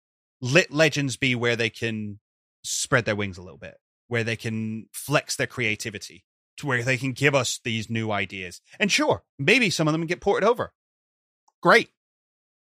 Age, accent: 30-49, British